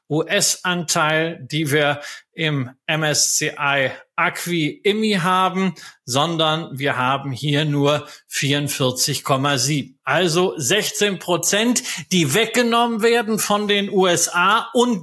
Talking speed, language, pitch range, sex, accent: 90 wpm, German, 150-200 Hz, male, German